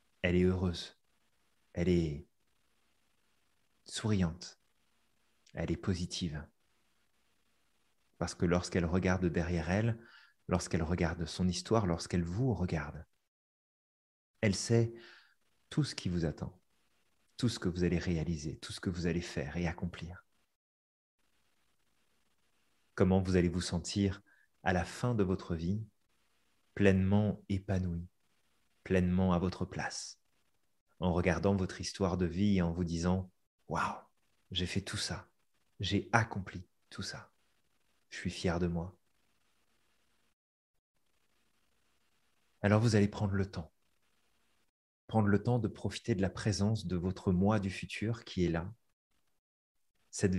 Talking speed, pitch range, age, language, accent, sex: 130 wpm, 90-100 Hz, 30-49, French, French, male